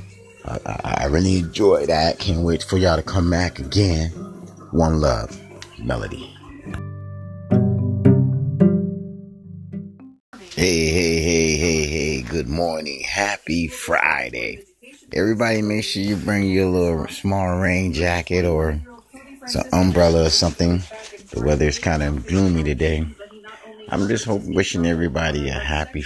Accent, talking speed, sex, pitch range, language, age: American, 125 wpm, male, 75-95 Hz, English, 30-49